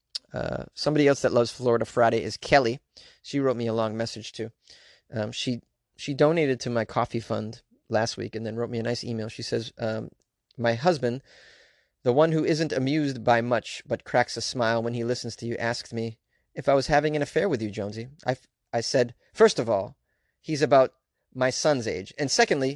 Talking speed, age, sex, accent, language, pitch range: 205 wpm, 30-49, male, American, English, 115-155 Hz